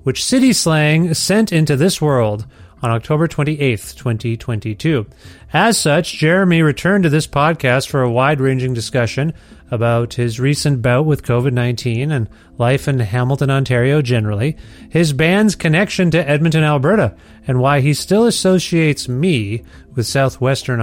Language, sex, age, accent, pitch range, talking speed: English, male, 30-49, American, 125-170 Hz, 140 wpm